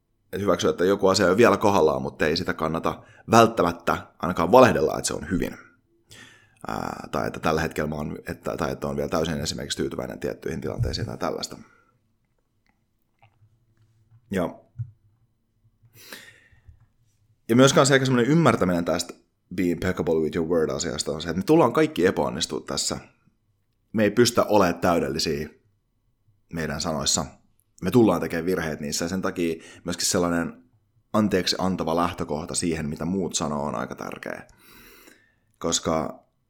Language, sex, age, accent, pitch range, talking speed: Finnish, male, 30-49, native, 85-110 Hz, 135 wpm